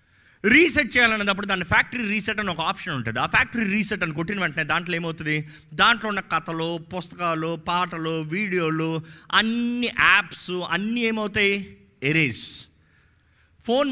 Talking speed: 125 wpm